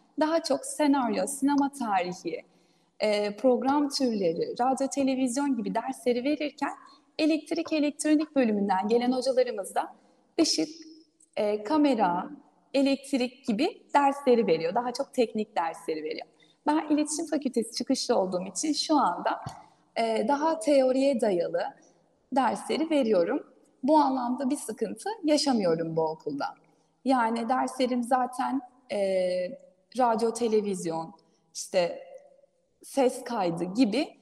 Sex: female